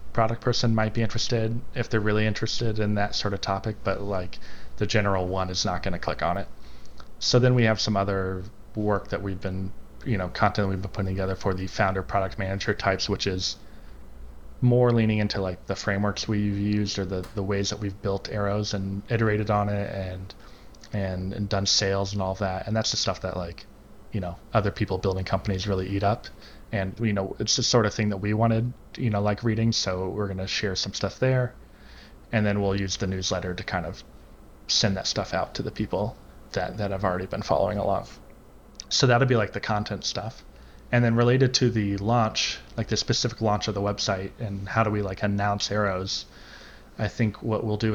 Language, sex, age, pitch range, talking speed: English, male, 20-39, 95-110 Hz, 220 wpm